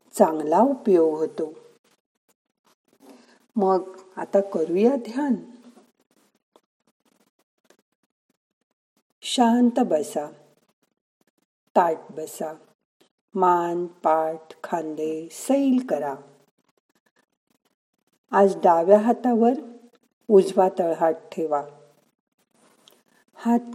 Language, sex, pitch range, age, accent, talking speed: Marathi, female, 165-230 Hz, 50-69, native, 45 wpm